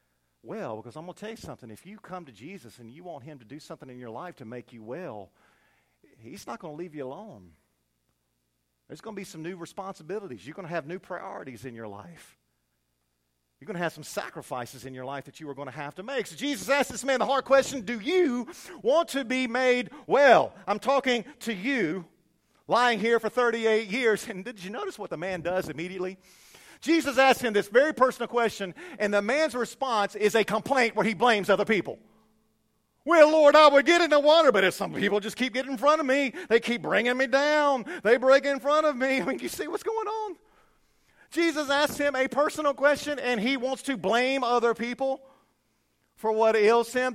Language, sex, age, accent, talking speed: English, male, 50-69, American, 220 wpm